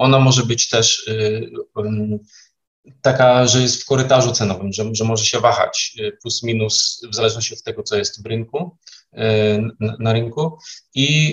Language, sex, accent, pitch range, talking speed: Polish, male, native, 110-130 Hz, 130 wpm